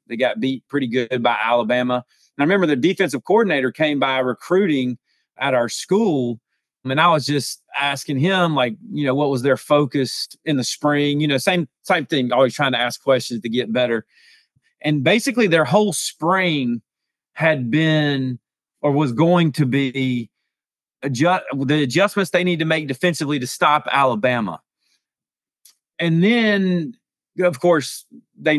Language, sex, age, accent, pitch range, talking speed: English, male, 30-49, American, 125-160 Hz, 160 wpm